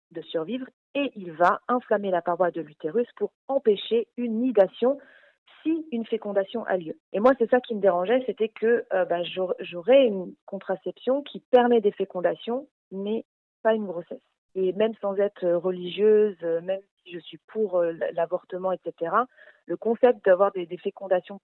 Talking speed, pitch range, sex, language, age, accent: 170 wpm, 175-220 Hz, female, French, 40-59, French